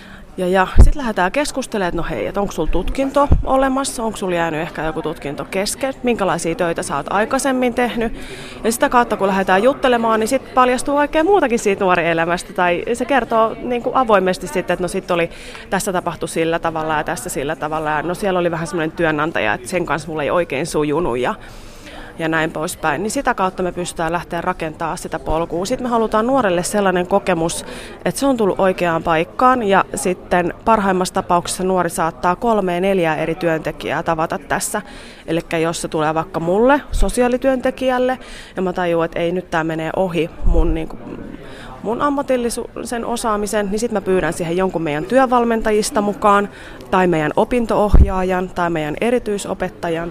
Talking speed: 170 wpm